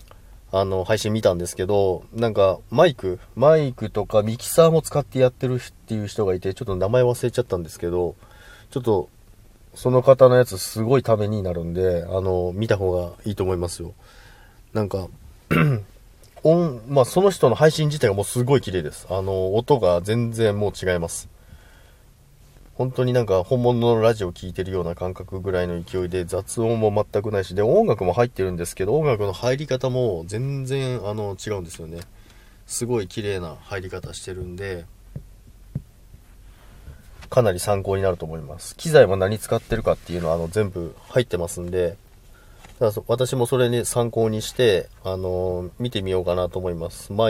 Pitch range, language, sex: 90-115 Hz, Japanese, male